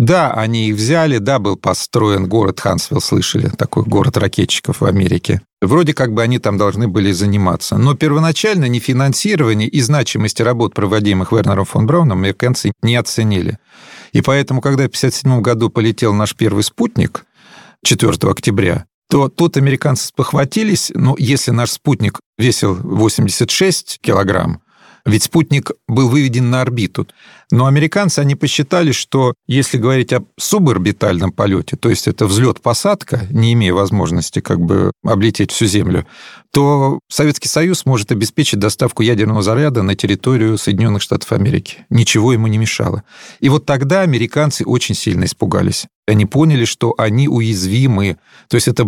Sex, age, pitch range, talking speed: male, 40-59, 105-140 Hz, 145 wpm